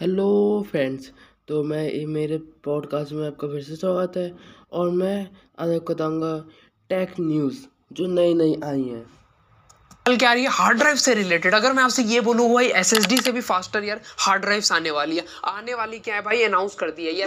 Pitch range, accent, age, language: 180-240 Hz, Indian, 20-39, English